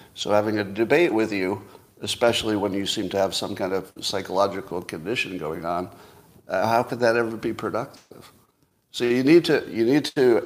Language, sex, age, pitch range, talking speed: English, male, 50-69, 105-135 Hz, 190 wpm